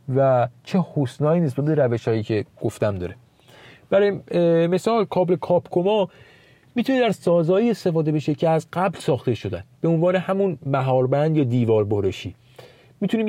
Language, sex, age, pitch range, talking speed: Persian, male, 40-59, 125-165 Hz, 145 wpm